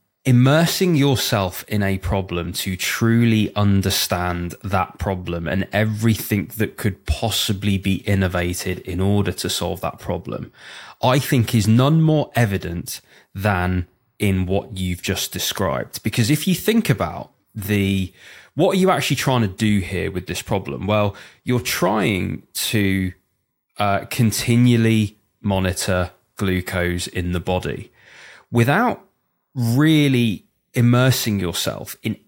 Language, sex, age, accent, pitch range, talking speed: English, male, 20-39, British, 95-120 Hz, 125 wpm